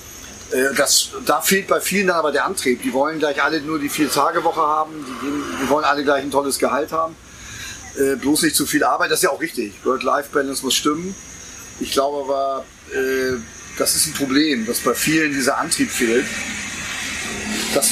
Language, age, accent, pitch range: German, 30-49, German, 125-160 Hz